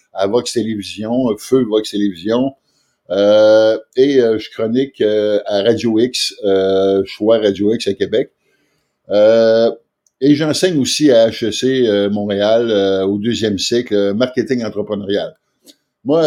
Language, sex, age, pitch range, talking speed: French, male, 50-69, 100-130 Hz, 135 wpm